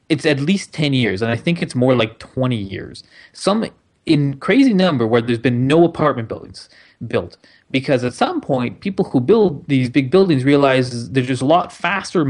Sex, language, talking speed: male, English, 215 wpm